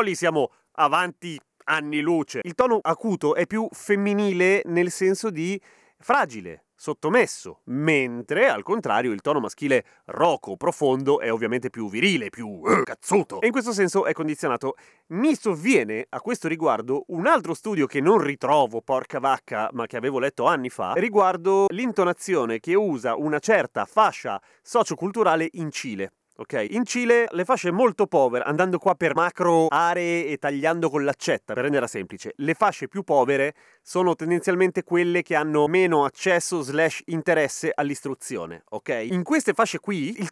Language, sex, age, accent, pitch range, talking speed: Italian, male, 30-49, native, 150-205 Hz, 155 wpm